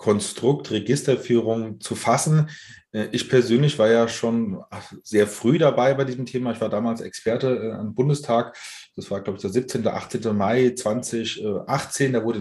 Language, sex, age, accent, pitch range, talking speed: English, male, 30-49, German, 115-140 Hz, 155 wpm